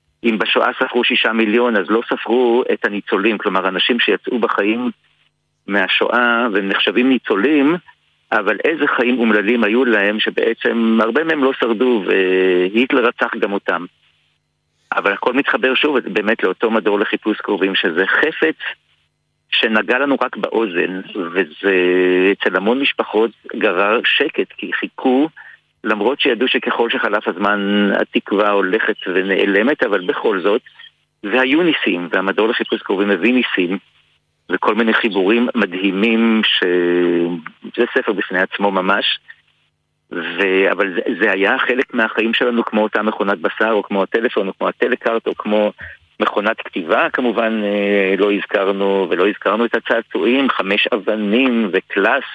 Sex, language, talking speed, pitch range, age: male, Hebrew, 130 wpm, 90-115 Hz, 50-69